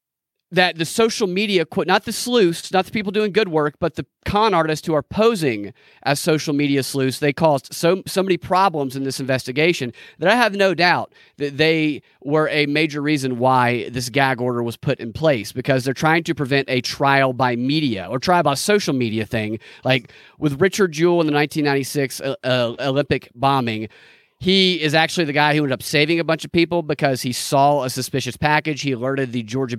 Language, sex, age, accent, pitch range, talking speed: English, male, 30-49, American, 135-175 Hz, 200 wpm